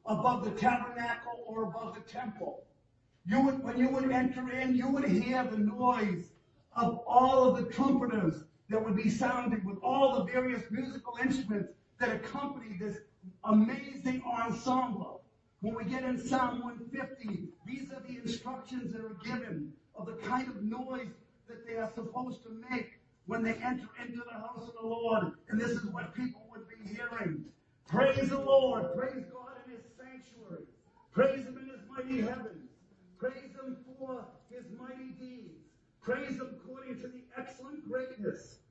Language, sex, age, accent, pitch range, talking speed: English, male, 50-69, American, 220-255 Hz, 165 wpm